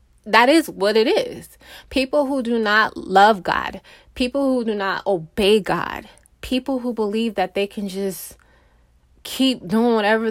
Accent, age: American, 20-39